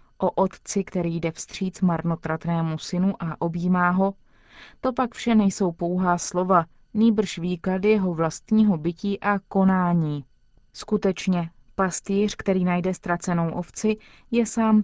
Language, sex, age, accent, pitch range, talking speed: Czech, female, 20-39, native, 175-200 Hz, 125 wpm